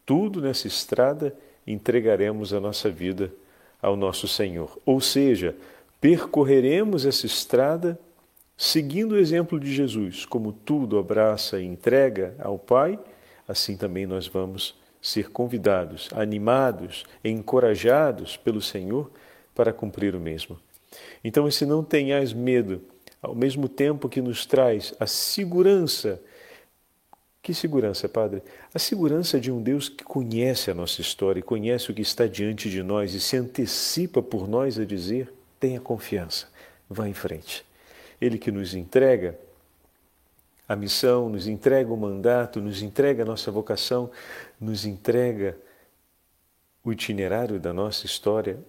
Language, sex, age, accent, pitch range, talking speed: Portuguese, male, 50-69, Brazilian, 100-130 Hz, 135 wpm